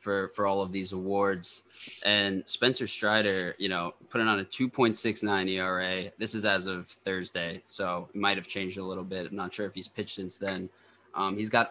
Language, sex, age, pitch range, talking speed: English, male, 20-39, 95-105 Hz, 200 wpm